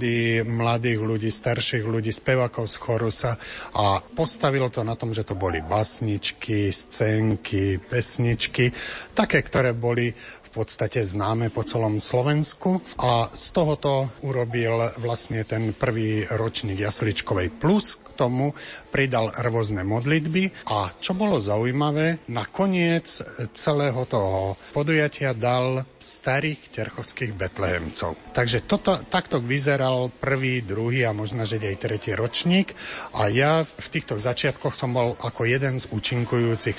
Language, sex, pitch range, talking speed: Slovak, male, 110-135 Hz, 125 wpm